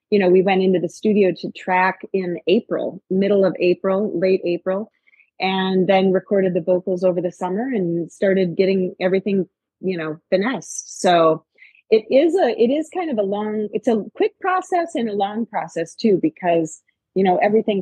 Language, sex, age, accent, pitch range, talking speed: English, female, 30-49, American, 175-205 Hz, 180 wpm